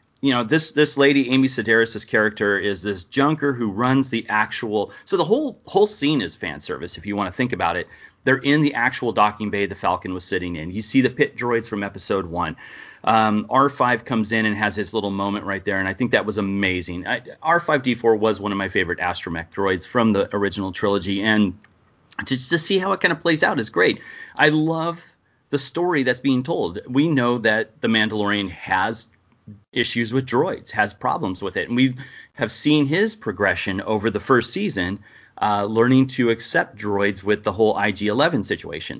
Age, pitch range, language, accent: 30-49, 105-140 Hz, English, American